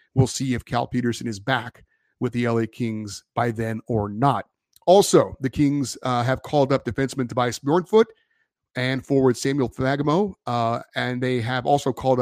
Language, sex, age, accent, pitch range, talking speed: English, male, 30-49, American, 120-150 Hz, 170 wpm